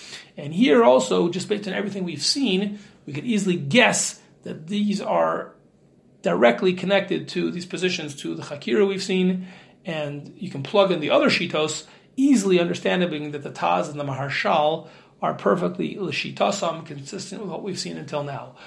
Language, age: English, 40-59